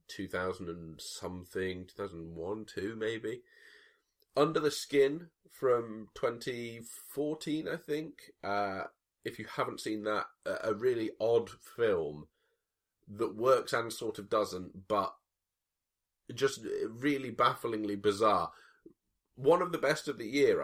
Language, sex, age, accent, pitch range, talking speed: English, male, 30-49, British, 90-145 Hz, 120 wpm